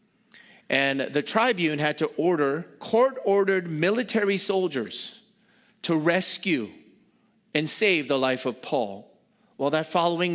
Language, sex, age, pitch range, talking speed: English, male, 40-59, 135-220 Hz, 115 wpm